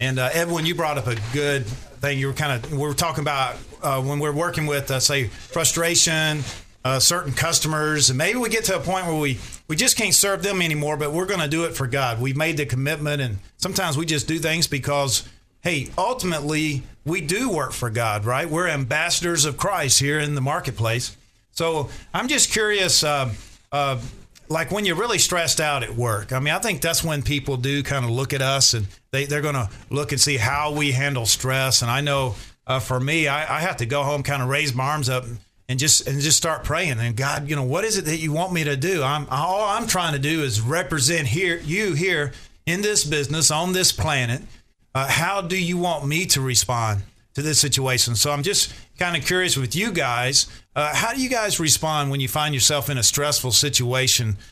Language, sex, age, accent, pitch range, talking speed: English, male, 40-59, American, 125-160 Hz, 225 wpm